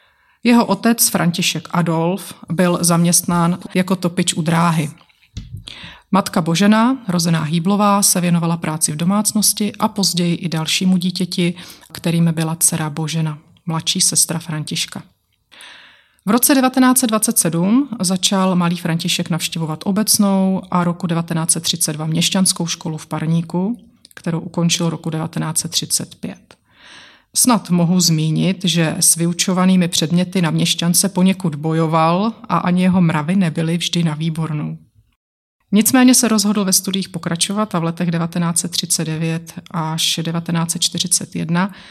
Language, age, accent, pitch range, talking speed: Czech, 30-49, native, 165-190 Hz, 115 wpm